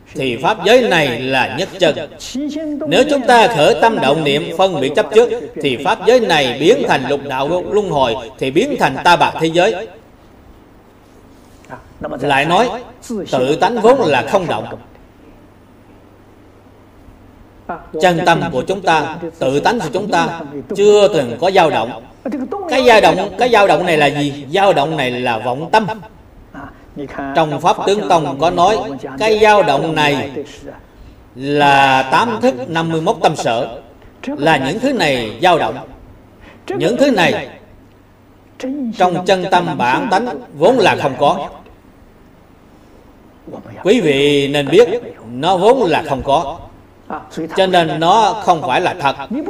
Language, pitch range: Vietnamese, 130-220 Hz